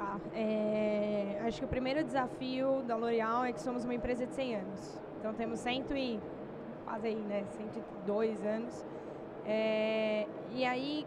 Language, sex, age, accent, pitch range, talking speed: Portuguese, female, 10-29, Brazilian, 225-270 Hz, 155 wpm